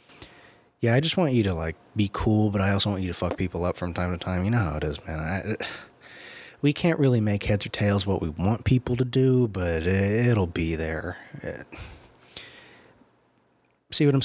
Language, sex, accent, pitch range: English, male, American, 95-125 Hz